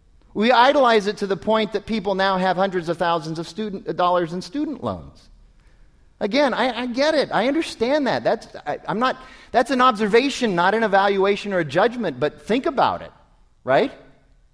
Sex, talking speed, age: male, 185 wpm, 40-59